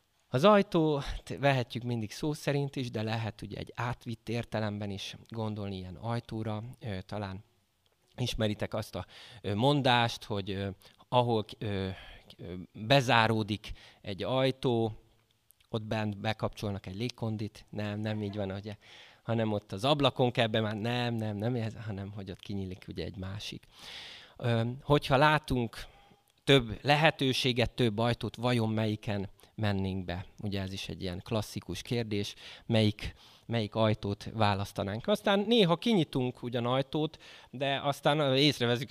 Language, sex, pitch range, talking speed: Hungarian, male, 100-130 Hz, 125 wpm